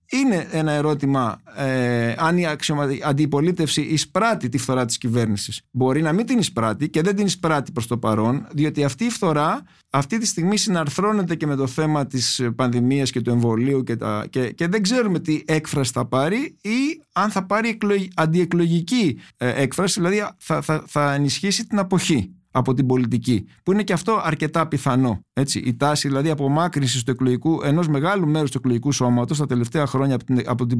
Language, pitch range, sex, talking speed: Greek, 130-190 Hz, male, 185 wpm